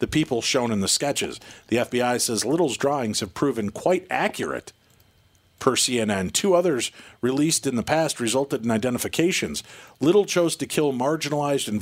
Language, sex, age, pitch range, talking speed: English, male, 40-59, 115-145 Hz, 160 wpm